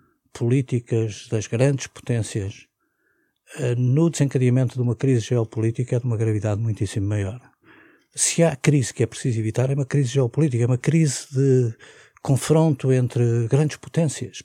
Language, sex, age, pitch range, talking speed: Portuguese, male, 50-69, 120-145 Hz, 145 wpm